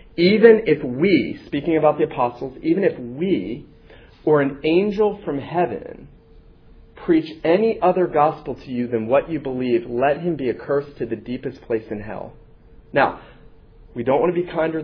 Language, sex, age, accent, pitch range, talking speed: English, male, 40-59, American, 120-160 Hz, 175 wpm